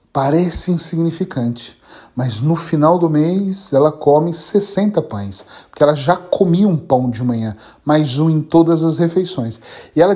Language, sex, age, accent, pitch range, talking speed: Portuguese, male, 40-59, Brazilian, 145-205 Hz, 160 wpm